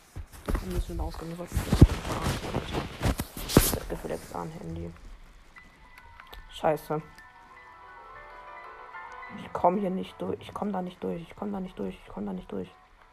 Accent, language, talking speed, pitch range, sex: German, German, 130 wpm, 155-190 Hz, female